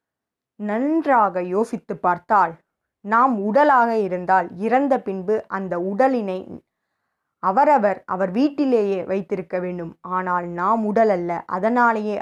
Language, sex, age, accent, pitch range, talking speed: Tamil, female, 20-39, native, 185-245 Hz, 100 wpm